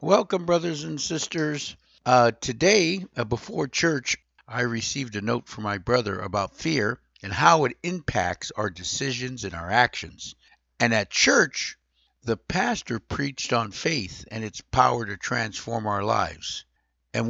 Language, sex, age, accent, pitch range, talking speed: English, male, 60-79, American, 100-135 Hz, 150 wpm